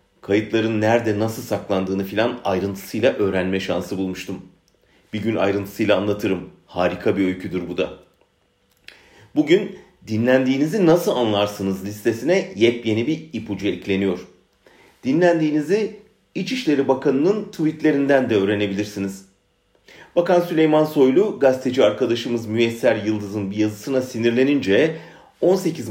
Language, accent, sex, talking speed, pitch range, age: German, Turkish, male, 100 wpm, 100-140 Hz, 40-59